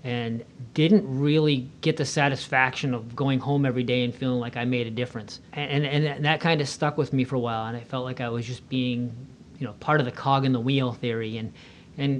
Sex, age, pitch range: male, 40-59, 120-145 Hz